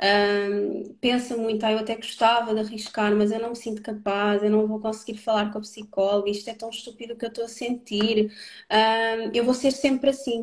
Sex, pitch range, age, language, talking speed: female, 215-250 Hz, 20-39, Portuguese, 220 wpm